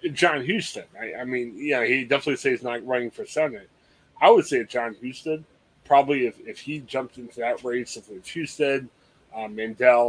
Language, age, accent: English, 30-49, American